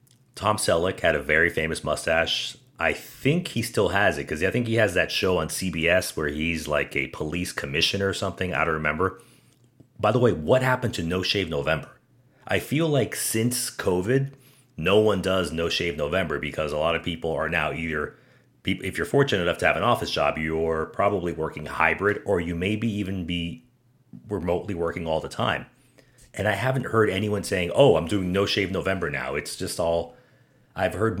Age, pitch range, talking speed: 30-49, 85-125 Hz, 195 wpm